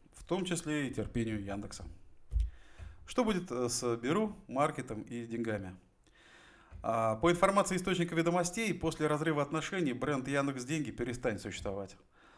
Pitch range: 115-165 Hz